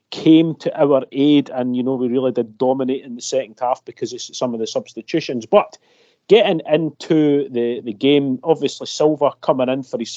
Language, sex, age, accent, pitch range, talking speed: English, male, 40-59, British, 130-160 Hz, 195 wpm